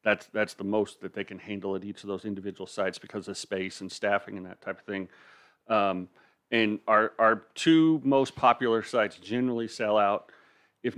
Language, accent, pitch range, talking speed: English, American, 100-120 Hz, 195 wpm